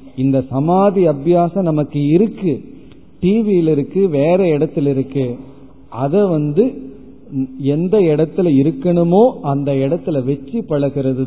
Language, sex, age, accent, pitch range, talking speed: Tamil, male, 40-59, native, 135-180 Hz, 95 wpm